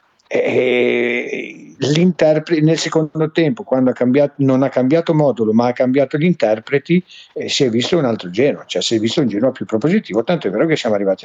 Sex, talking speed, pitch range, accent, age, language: male, 195 wpm, 120-170 Hz, native, 50-69, Italian